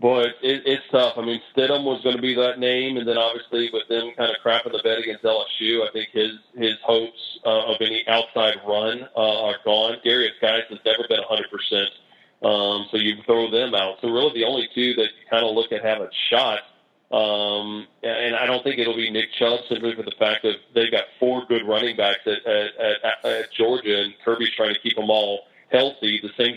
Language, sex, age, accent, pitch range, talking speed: English, male, 40-59, American, 110-125 Hz, 225 wpm